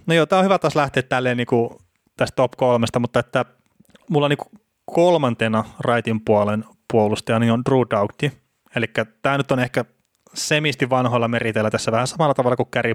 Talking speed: 170 wpm